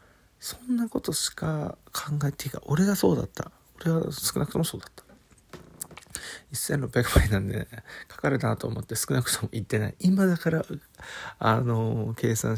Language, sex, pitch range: Japanese, male, 105-155 Hz